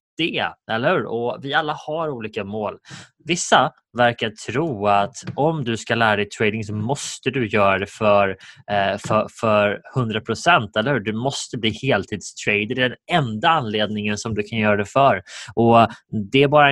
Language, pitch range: Swedish, 105-130 Hz